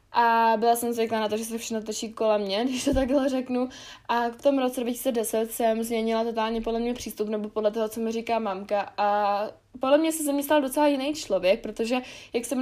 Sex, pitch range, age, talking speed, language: female, 215-245 Hz, 20-39, 215 wpm, Czech